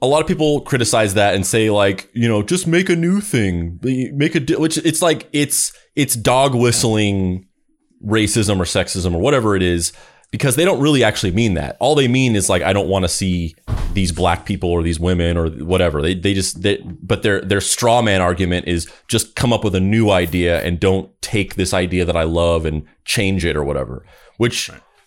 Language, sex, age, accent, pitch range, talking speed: English, male, 30-49, American, 95-130 Hz, 215 wpm